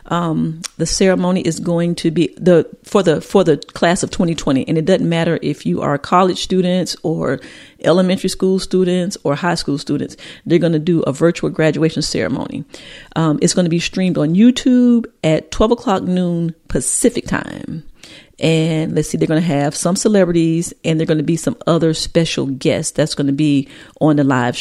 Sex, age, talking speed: female, 40-59, 195 wpm